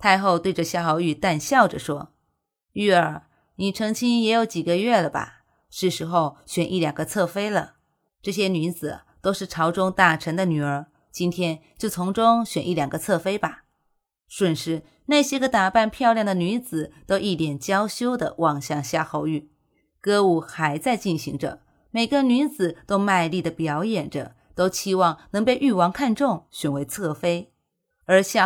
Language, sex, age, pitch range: Chinese, female, 30-49, 160-210 Hz